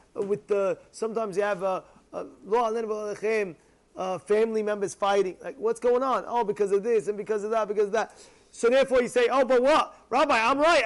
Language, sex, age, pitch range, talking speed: English, male, 30-49, 205-290 Hz, 200 wpm